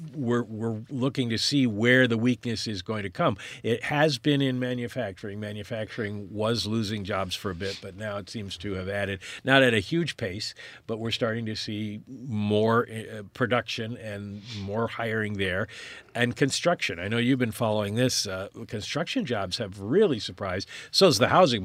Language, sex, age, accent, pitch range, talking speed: English, male, 50-69, American, 105-125 Hz, 180 wpm